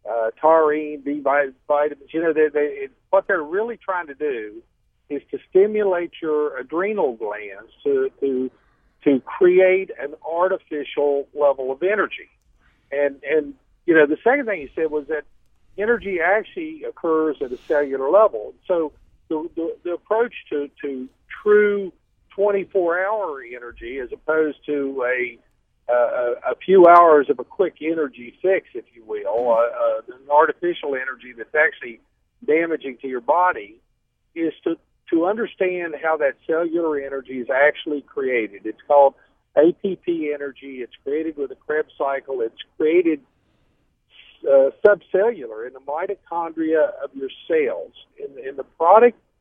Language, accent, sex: English, American, male